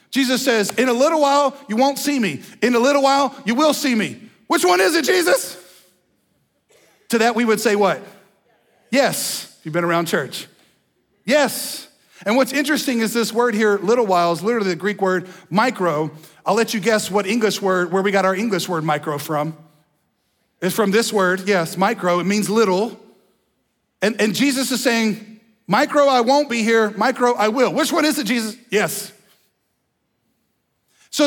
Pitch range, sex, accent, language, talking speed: 170-230 Hz, male, American, English, 180 wpm